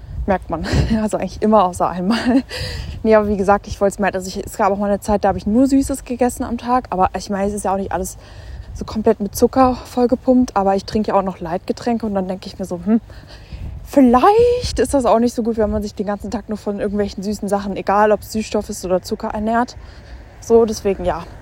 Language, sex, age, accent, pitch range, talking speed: German, female, 20-39, German, 185-220 Hz, 250 wpm